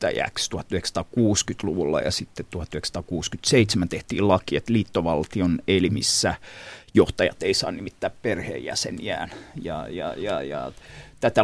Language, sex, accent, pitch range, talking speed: Finnish, male, native, 100-120 Hz, 80 wpm